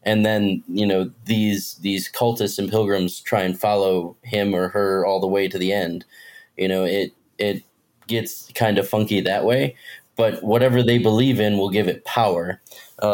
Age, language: 20-39, English